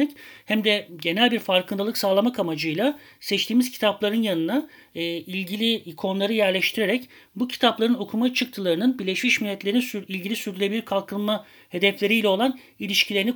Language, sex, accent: Turkish, male, native